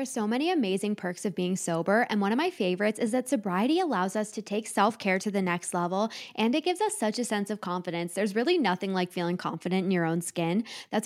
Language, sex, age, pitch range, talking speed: English, female, 20-39, 190-255 Hz, 245 wpm